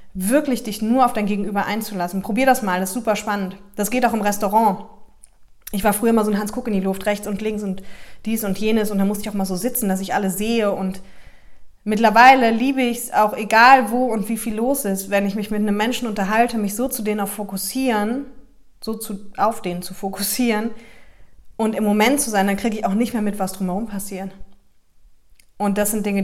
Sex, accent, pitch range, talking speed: female, German, 195-225 Hz, 230 wpm